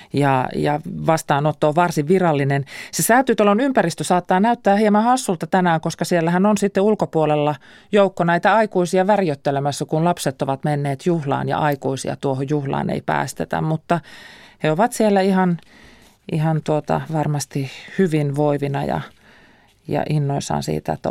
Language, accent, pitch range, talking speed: Finnish, native, 140-180 Hz, 135 wpm